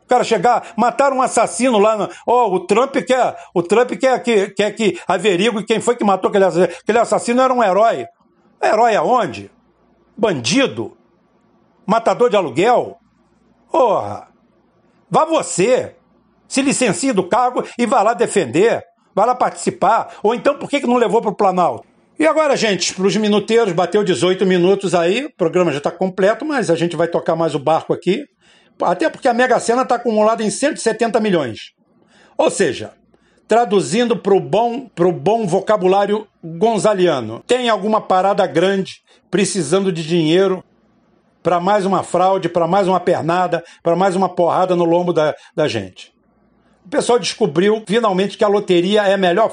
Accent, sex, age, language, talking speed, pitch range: Brazilian, male, 60-79, Portuguese, 165 wpm, 180-235 Hz